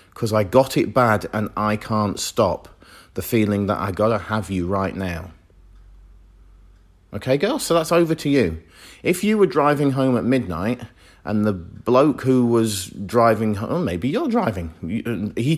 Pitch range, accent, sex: 90-120 Hz, British, male